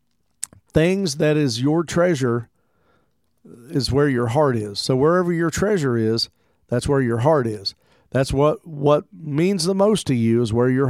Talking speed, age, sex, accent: 170 wpm, 50-69, male, American